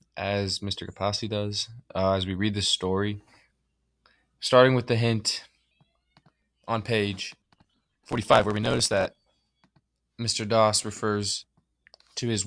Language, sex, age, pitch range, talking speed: English, male, 20-39, 95-110 Hz, 125 wpm